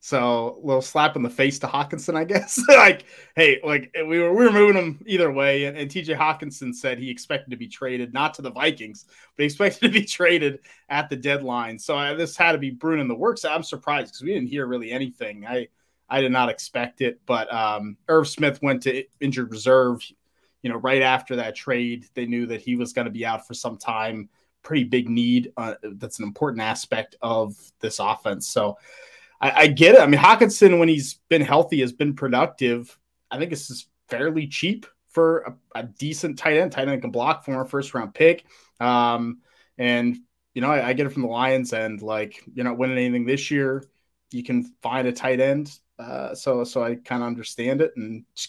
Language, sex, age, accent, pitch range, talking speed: English, male, 30-49, American, 125-160 Hz, 220 wpm